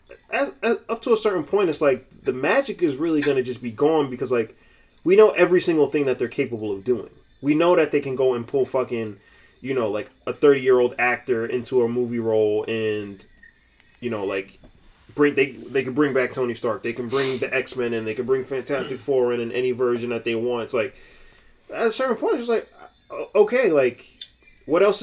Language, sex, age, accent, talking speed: English, male, 20-39, American, 225 wpm